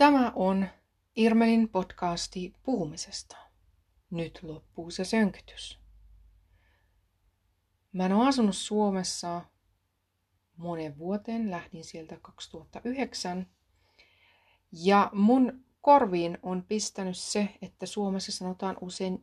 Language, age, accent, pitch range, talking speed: Finnish, 30-49, native, 165-215 Hz, 85 wpm